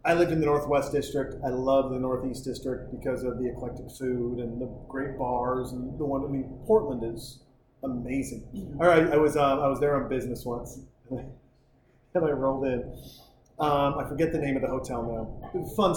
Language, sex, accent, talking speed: English, male, American, 210 wpm